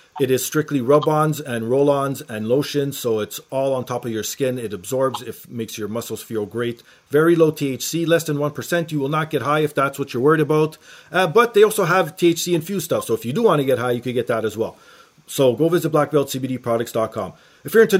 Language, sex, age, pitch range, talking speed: English, male, 40-59, 125-155 Hz, 245 wpm